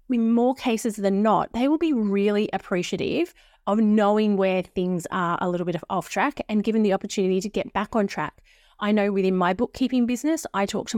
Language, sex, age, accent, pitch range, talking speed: English, female, 30-49, Australian, 185-235 Hz, 215 wpm